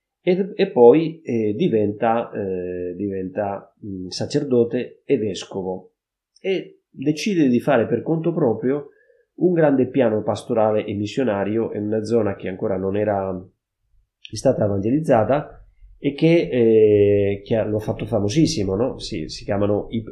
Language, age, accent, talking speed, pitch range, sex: Italian, 30-49, native, 135 wpm, 100-120 Hz, male